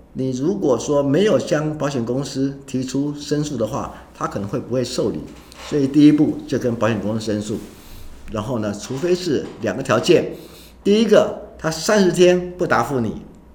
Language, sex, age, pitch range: Chinese, male, 50-69, 100-140 Hz